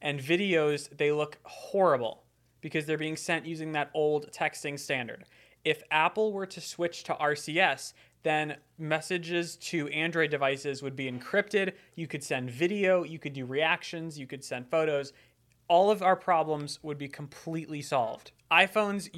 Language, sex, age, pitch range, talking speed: English, male, 20-39, 140-165 Hz, 155 wpm